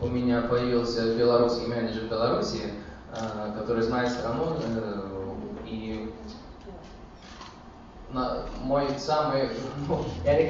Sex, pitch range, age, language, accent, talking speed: male, 110-135 Hz, 20-39, Russian, native, 70 wpm